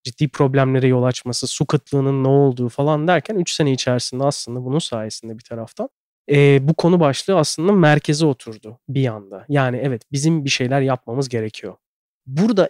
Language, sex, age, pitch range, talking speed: Turkish, male, 30-49, 125-150 Hz, 165 wpm